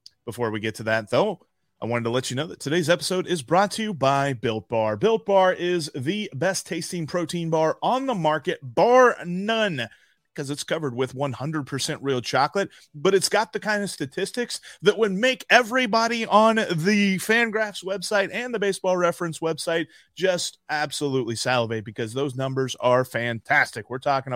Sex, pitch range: male, 130-180 Hz